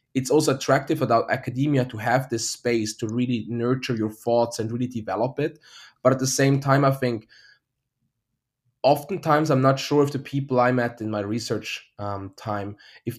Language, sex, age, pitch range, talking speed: English, male, 20-39, 110-130 Hz, 180 wpm